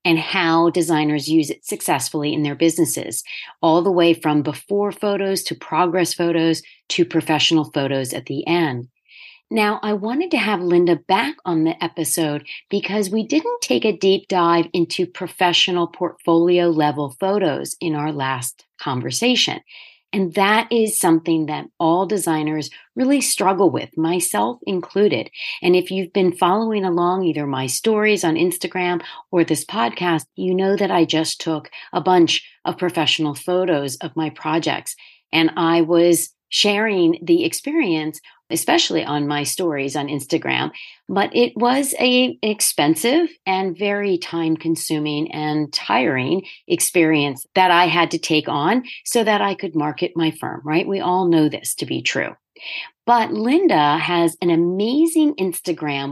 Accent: American